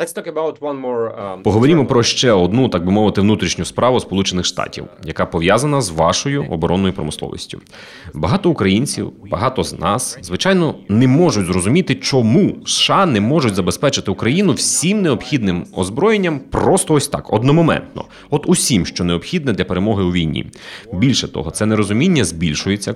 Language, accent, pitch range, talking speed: Ukrainian, native, 95-140 Hz, 135 wpm